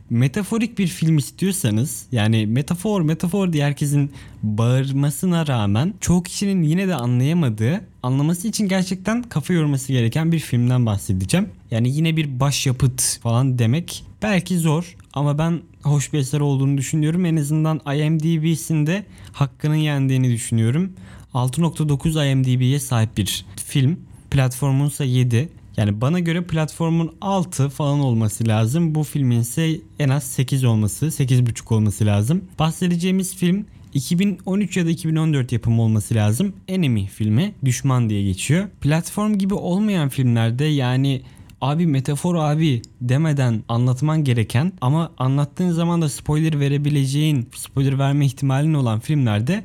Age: 20-39